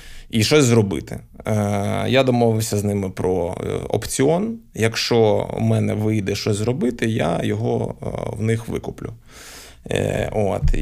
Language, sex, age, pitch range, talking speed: Ukrainian, male, 20-39, 105-115 Hz, 115 wpm